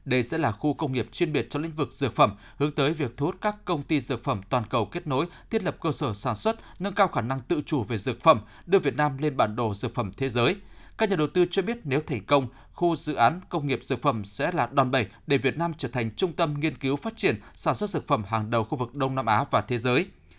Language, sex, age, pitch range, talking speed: Vietnamese, male, 20-39, 125-165 Hz, 285 wpm